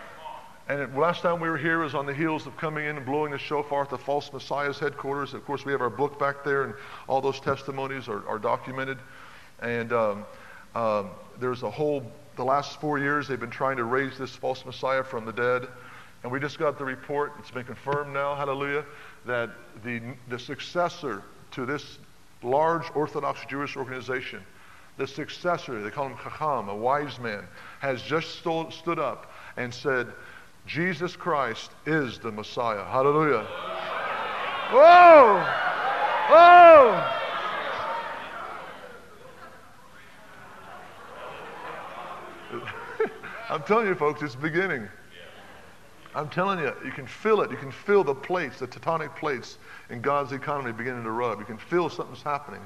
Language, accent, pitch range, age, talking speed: English, American, 125-155 Hz, 50-69, 155 wpm